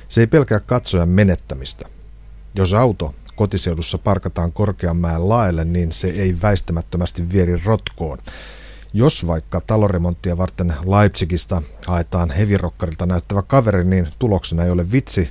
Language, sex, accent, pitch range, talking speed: Finnish, male, native, 85-100 Hz, 120 wpm